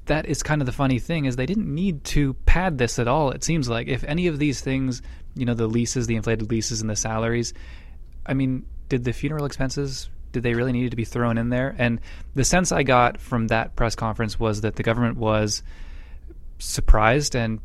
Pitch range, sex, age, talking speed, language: 110-125 Hz, male, 20-39, 220 wpm, English